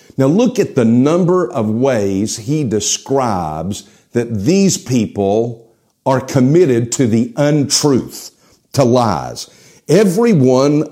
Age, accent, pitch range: 50-69, American, 110-140 Hz